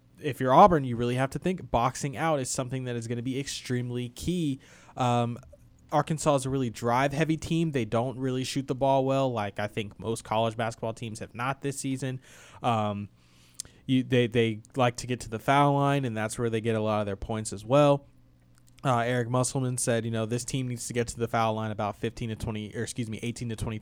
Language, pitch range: English, 110-130 Hz